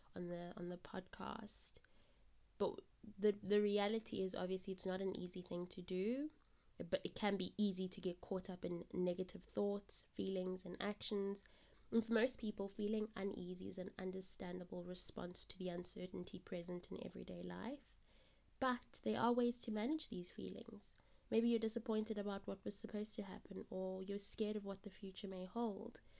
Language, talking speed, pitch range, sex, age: English, 175 wpm, 180-215 Hz, female, 20-39